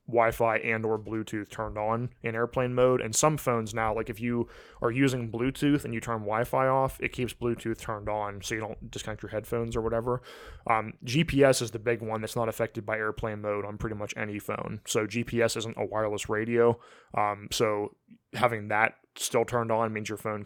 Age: 20-39